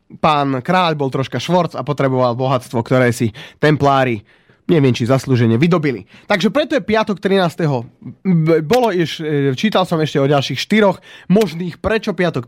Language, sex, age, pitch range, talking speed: Slovak, male, 30-49, 130-185 Hz, 145 wpm